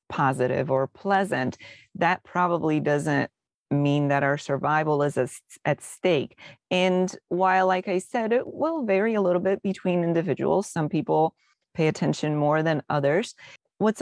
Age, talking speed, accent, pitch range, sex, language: 30-49, 145 wpm, American, 150-195 Hz, female, English